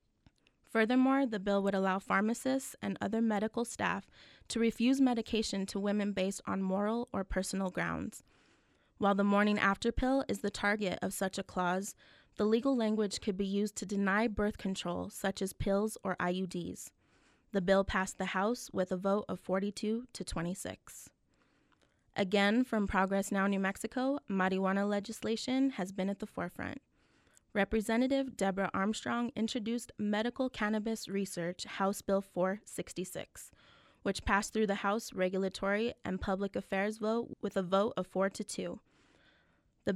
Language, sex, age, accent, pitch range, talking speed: English, female, 20-39, American, 195-220 Hz, 150 wpm